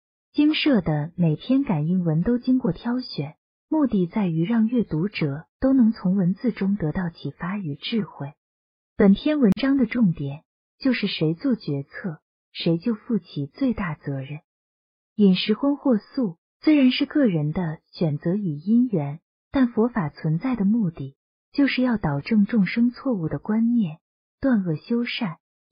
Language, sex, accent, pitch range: Chinese, female, native, 160-240 Hz